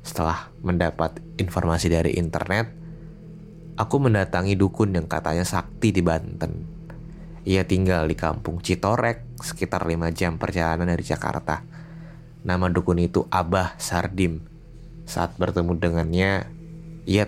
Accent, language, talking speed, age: native, Indonesian, 115 wpm, 20-39